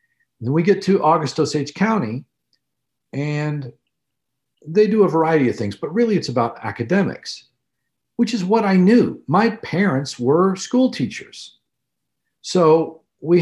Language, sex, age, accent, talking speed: English, male, 50-69, American, 140 wpm